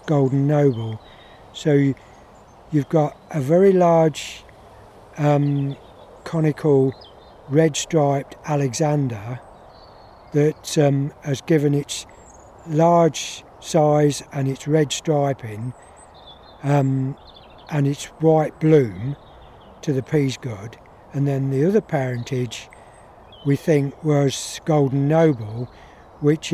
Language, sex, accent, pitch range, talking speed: English, male, British, 130-155 Hz, 100 wpm